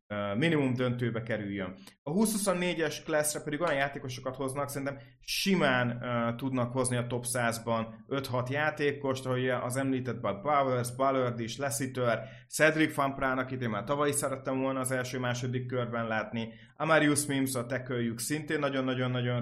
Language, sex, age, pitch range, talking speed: Hungarian, male, 30-49, 120-145 Hz, 140 wpm